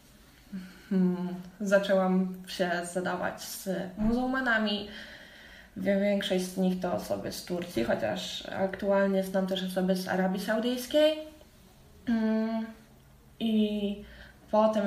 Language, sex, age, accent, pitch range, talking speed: Polish, female, 10-29, native, 190-230 Hz, 95 wpm